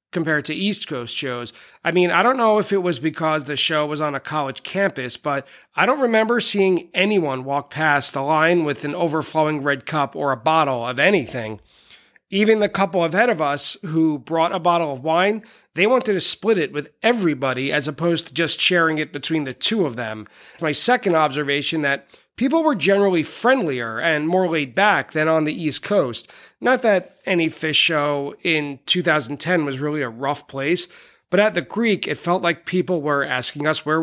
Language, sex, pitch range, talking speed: English, male, 145-185 Hz, 195 wpm